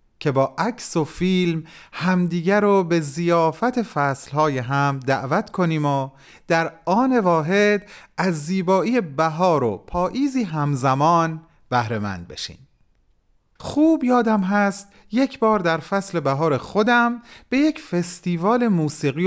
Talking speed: 120 wpm